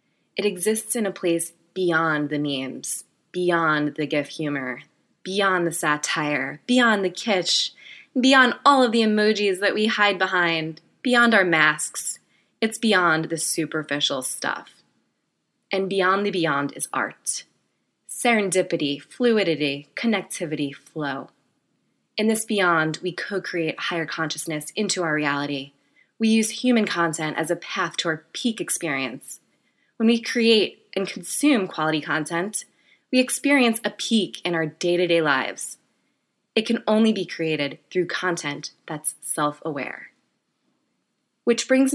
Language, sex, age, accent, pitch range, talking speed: English, female, 20-39, American, 155-215 Hz, 130 wpm